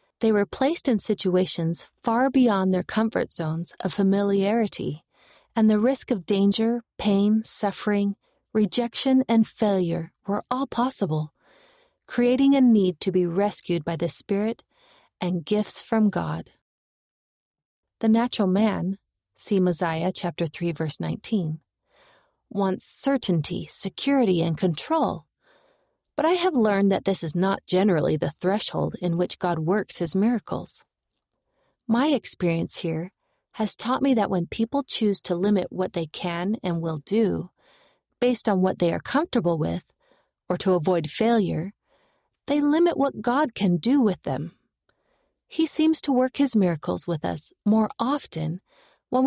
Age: 30-49